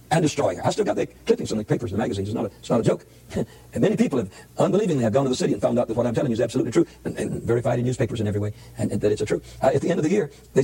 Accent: American